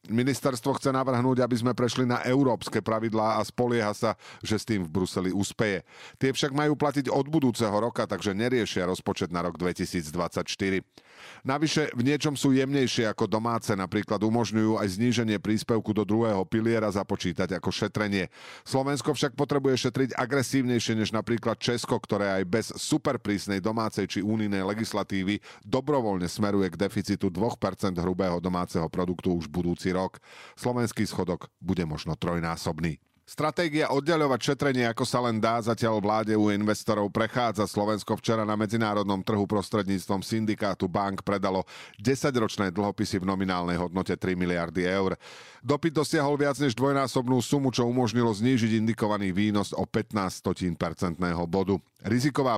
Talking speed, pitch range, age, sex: 145 wpm, 95-125 Hz, 40-59, male